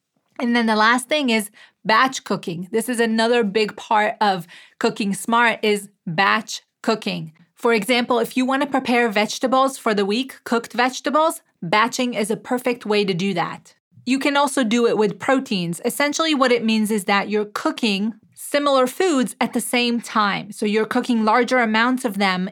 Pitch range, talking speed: 205-245 Hz, 180 wpm